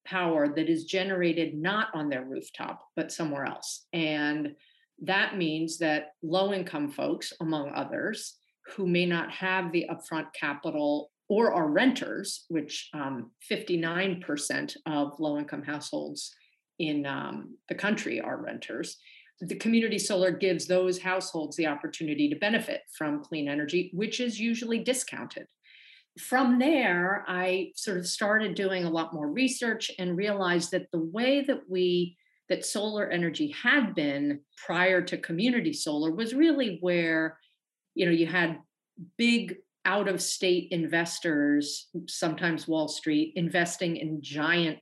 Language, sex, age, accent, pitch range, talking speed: English, female, 50-69, American, 160-210 Hz, 140 wpm